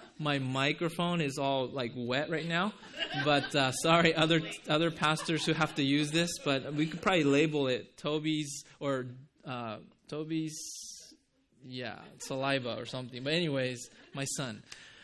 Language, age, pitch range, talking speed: English, 20-39, 140-190 Hz, 150 wpm